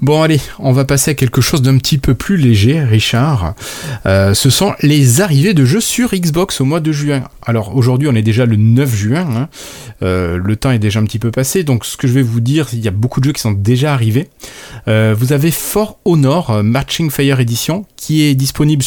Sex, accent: male, French